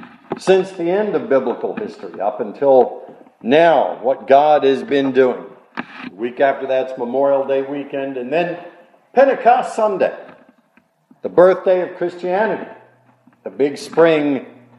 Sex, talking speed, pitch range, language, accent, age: male, 130 wpm, 140-195 Hz, English, American, 50-69